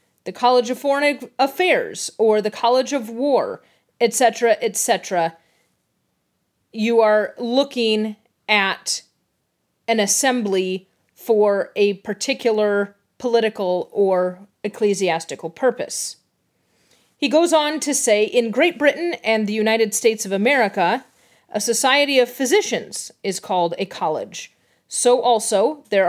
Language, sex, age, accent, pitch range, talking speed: English, female, 30-49, American, 200-275 Hz, 115 wpm